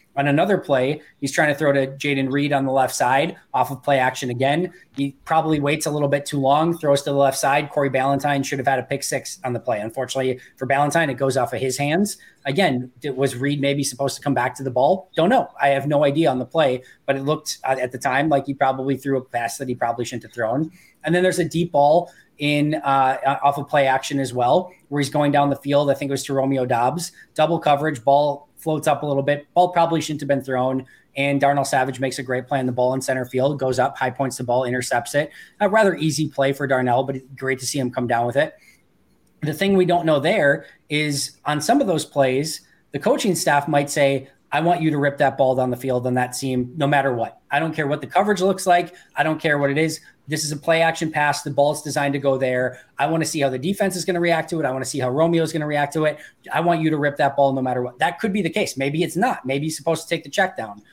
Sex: male